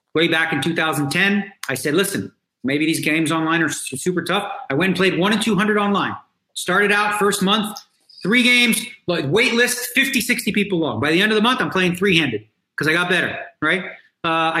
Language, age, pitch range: English, 40-59, 155-215 Hz